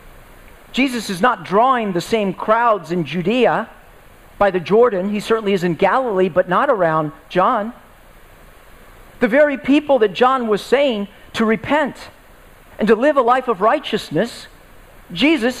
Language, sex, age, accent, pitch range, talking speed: English, male, 50-69, American, 205-260 Hz, 145 wpm